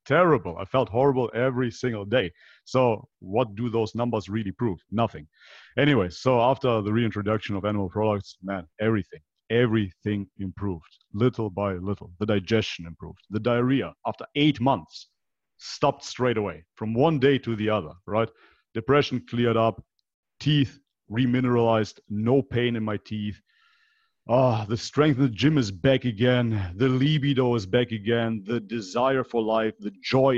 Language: English